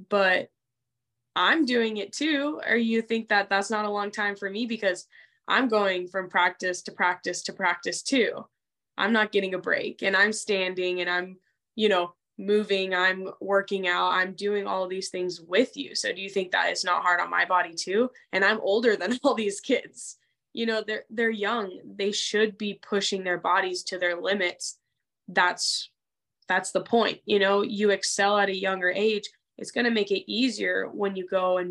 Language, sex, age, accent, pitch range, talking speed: English, female, 10-29, American, 180-210 Hz, 195 wpm